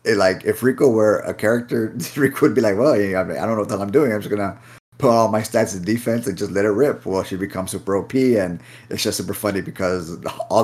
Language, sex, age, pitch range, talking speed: English, male, 30-49, 95-115 Hz, 255 wpm